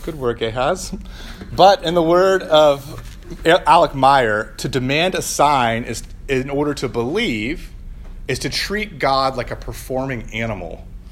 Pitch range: 95-145 Hz